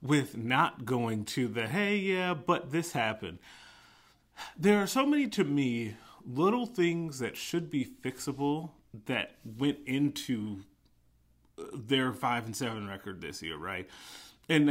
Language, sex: English, male